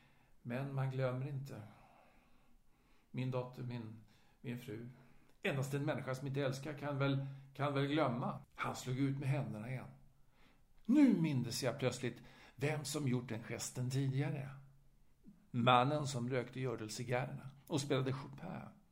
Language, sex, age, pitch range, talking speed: Swedish, male, 60-79, 125-150 Hz, 145 wpm